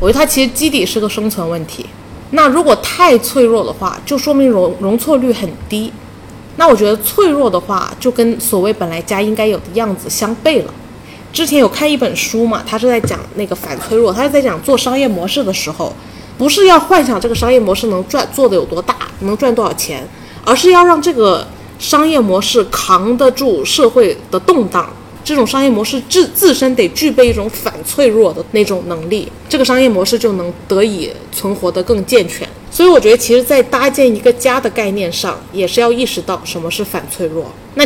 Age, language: 20-39, Chinese